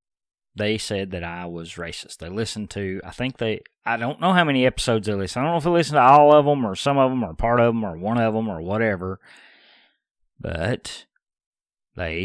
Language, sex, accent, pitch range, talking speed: English, male, American, 100-145 Hz, 225 wpm